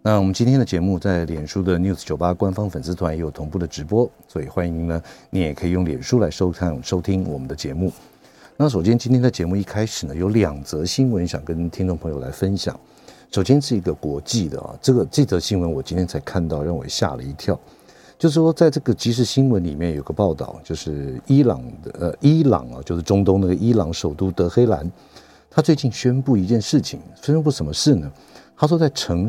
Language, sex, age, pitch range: Chinese, male, 50-69, 85-125 Hz